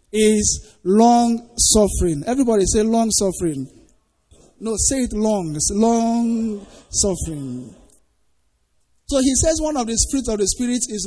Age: 50-69